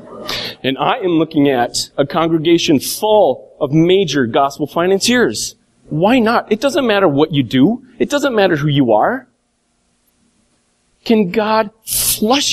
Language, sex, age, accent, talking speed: English, male, 40-59, American, 140 wpm